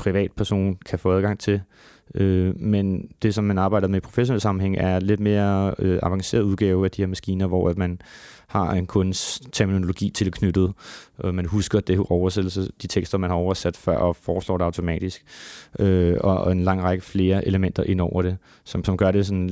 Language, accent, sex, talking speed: Danish, native, male, 180 wpm